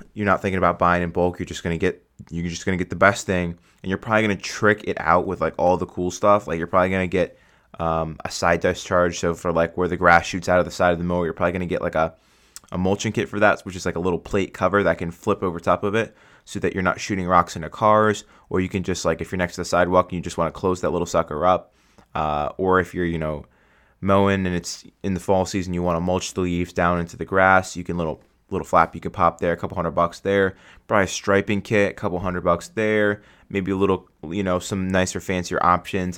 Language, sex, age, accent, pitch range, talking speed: English, male, 20-39, American, 85-95 Hz, 275 wpm